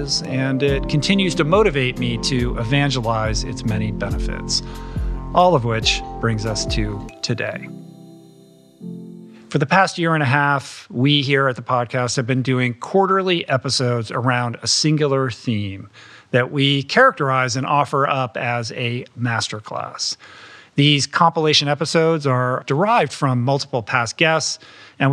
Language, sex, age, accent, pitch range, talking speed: English, male, 50-69, American, 115-145 Hz, 140 wpm